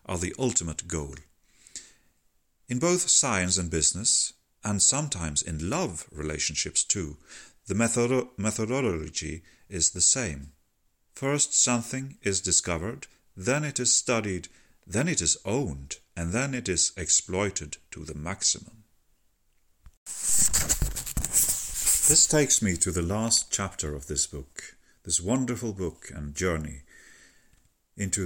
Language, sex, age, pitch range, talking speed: English, male, 40-59, 80-115 Hz, 120 wpm